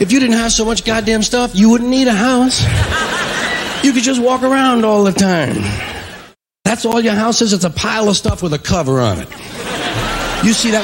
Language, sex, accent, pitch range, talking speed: English, male, American, 160-225 Hz, 215 wpm